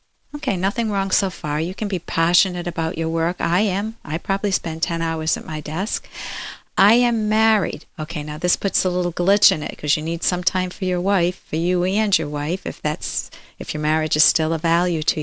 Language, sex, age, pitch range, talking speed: English, female, 50-69, 175-220 Hz, 225 wpm